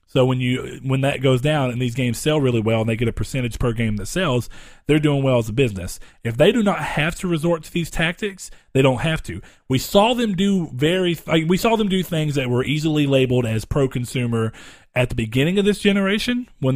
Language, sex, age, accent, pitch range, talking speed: English, male, 40-59, American, 120-155 Hz, 245 wpm